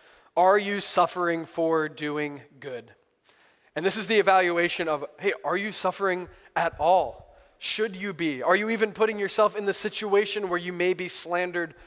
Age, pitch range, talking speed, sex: 20-39, 140-175 Hz, 170 wpm, male